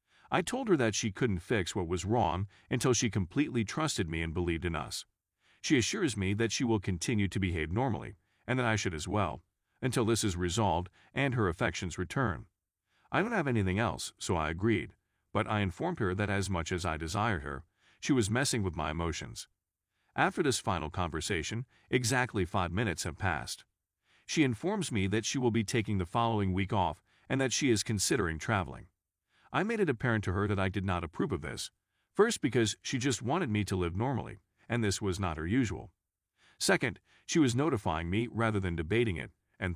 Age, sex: 40-59, male